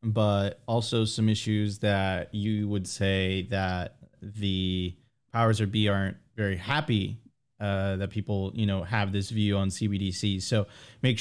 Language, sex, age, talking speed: English, male, 20-39, 150 wpm